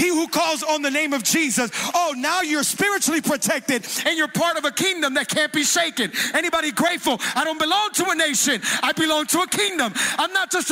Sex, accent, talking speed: male, American, 220 wpm